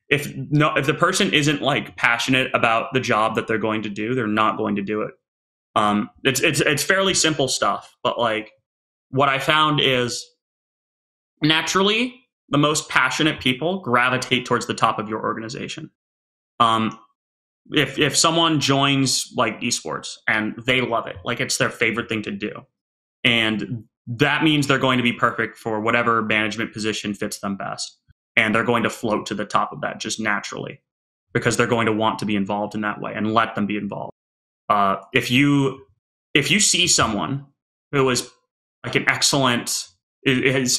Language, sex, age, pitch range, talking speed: English, male, 20-39, 110-145 Hz, 180 wpm